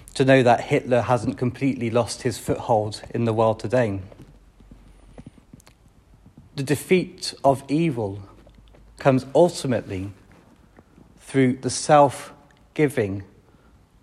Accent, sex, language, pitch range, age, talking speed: British, male, English, 115-135 Hz, 40-59, 95 wpm